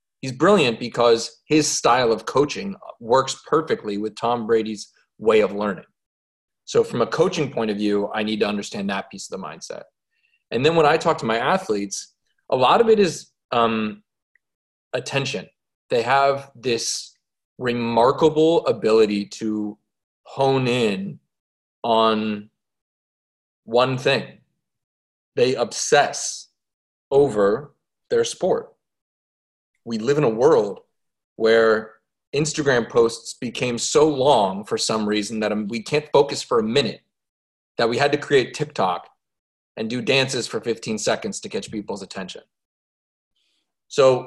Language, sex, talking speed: English, male, 135 wpm